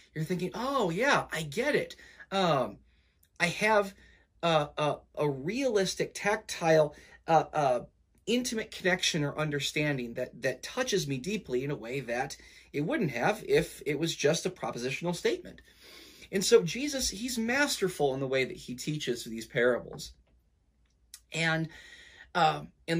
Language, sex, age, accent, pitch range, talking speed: English, male, 30-49, American, 125-185 Hz, 145 wpm